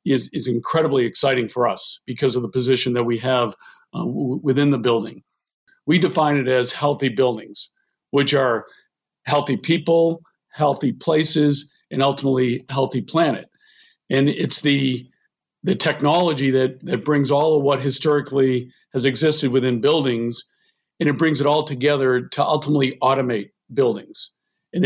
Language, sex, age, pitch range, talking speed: English, male, 50-69, 130-150 Hz, 145 wpm